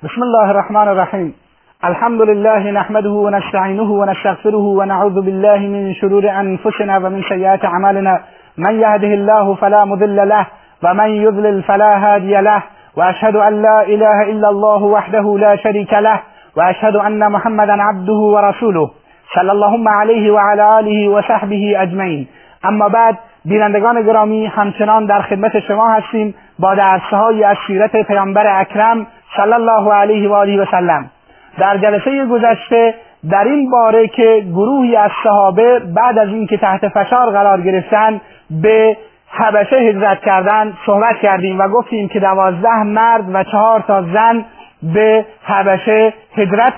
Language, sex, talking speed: Persian, male, 135 wpm